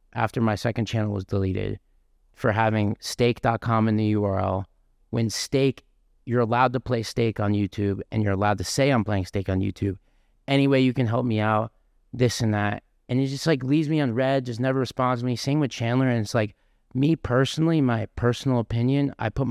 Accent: American